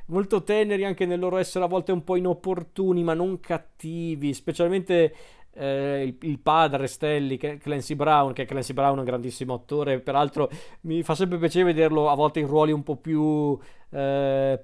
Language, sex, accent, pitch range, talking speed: Italian, male, native, 135-160 Hz, 170 wpm